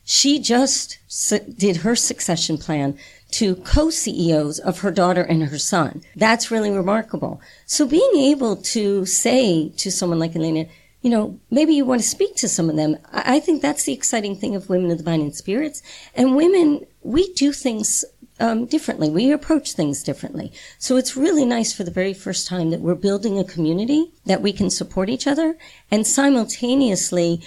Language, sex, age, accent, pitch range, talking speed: English, female, 50-69, American, 170-235 Hz, 180 wpm